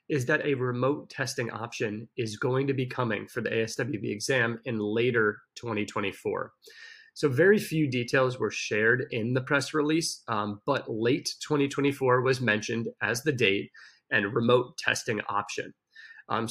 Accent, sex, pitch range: American, male, 115-145 Hz